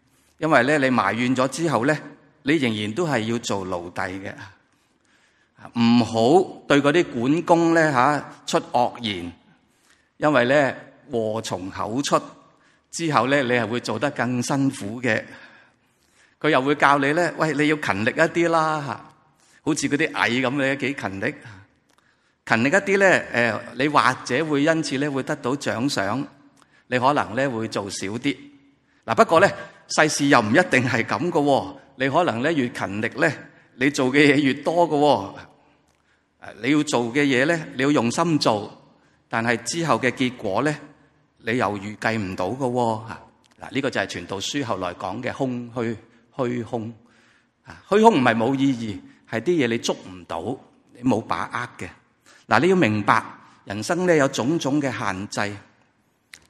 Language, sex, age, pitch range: Chinese, male, 30-49, 115-150 Hz